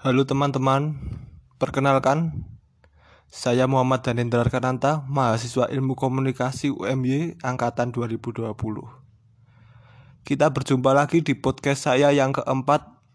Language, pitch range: Indonesian, 115-140 Hz